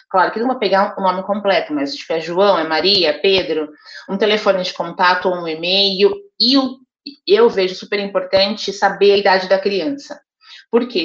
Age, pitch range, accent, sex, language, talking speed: 20-39, 180-215 Hz, Brazilian, female, Portuguese, 195 wpm